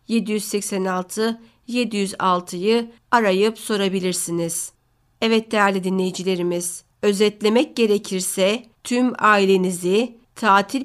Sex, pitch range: female, 185-225 Hz